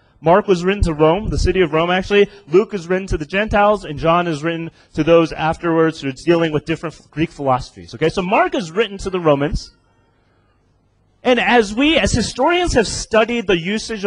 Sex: male